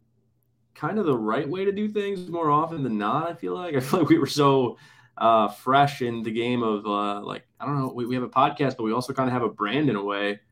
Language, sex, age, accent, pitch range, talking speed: English, male, 20-39, American, 110-130 Hz, 275 wpm